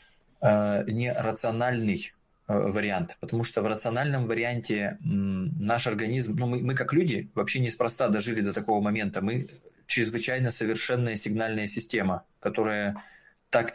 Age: 20-39